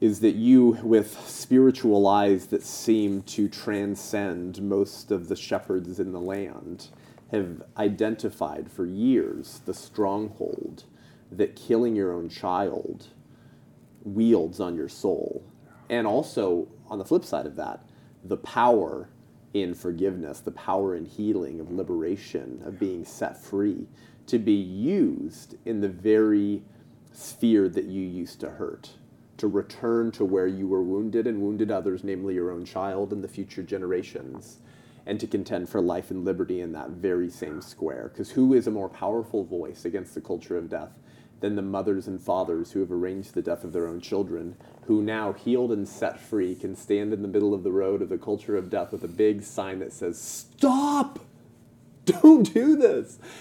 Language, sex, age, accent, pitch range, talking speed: English, male, 30-49, American, 95-110 Hz, 170 wpm